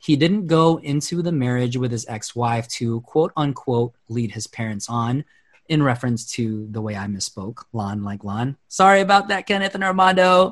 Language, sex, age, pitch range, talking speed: English, male, 30-49, 115-150 Hz, 175 wpm